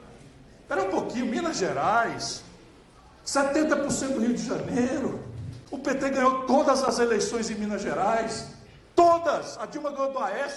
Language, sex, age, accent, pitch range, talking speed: Portuguese, male, 60-79, Brazilian, 195-260 Hz, 140 wpm